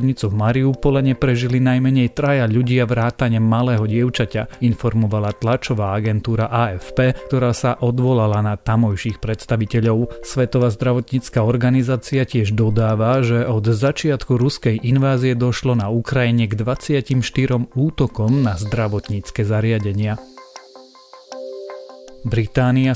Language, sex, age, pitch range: Slovak, male, 30-49, 115-130 Hz